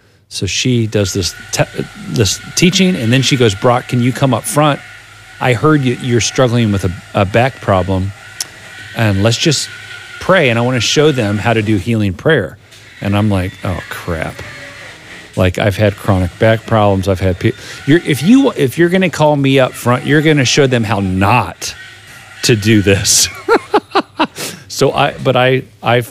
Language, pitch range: English, 100-120 Hz